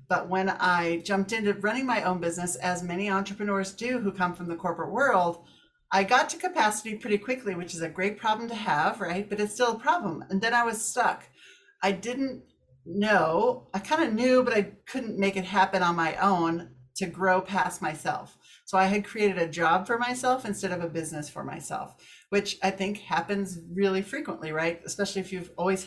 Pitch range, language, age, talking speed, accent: 175-220 Hz, English, 40-59, 205 wpm, American